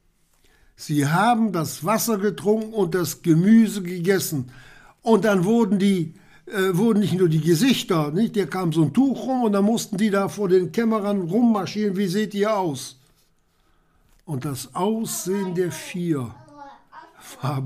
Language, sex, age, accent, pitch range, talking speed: German, male, 60-79, German, 135-185 Hz, 155 wpm